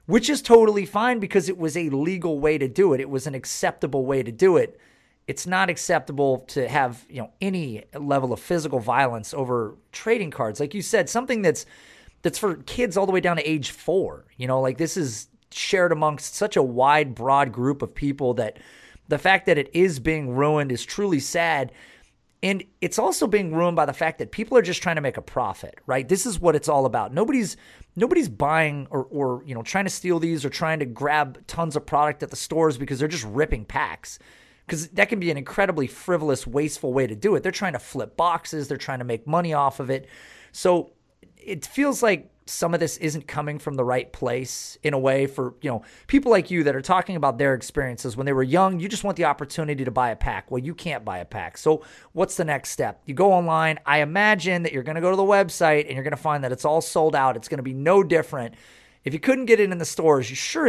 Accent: American